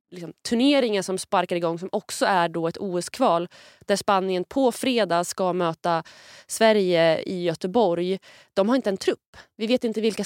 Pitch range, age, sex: 175-220 Hz, 20-39, female